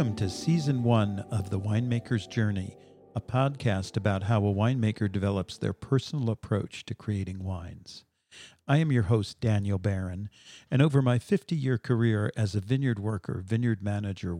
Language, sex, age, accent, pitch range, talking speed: English, male, 50-69, American, 100-120 Hz, 160 wpm